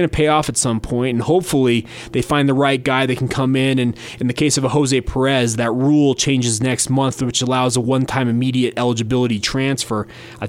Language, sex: English, male